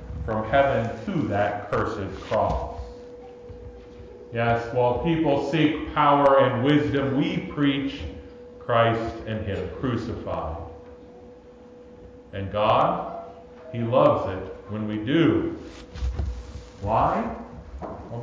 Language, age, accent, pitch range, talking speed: English, 40-59, American, 105-150 Hz, 95 wpm